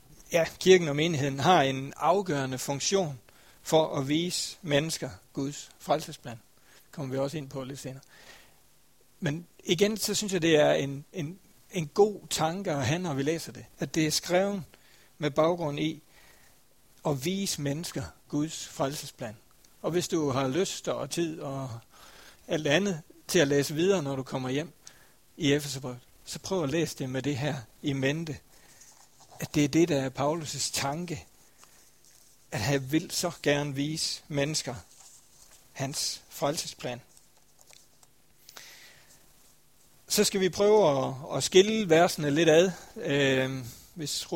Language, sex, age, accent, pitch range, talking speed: Danish, male, 60-79, native, 135-170 Hz, 150 wpm